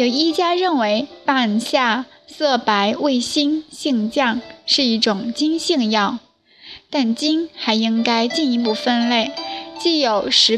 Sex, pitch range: female, 225-300 Hz